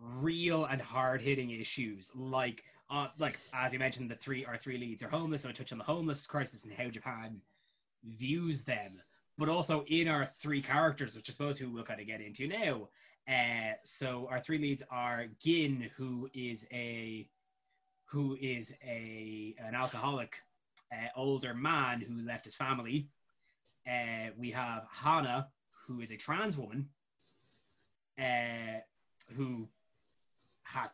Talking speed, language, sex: 155 wpm, English, male